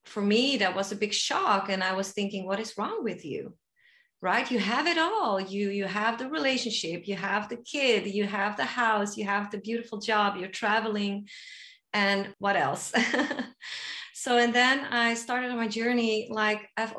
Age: 30-49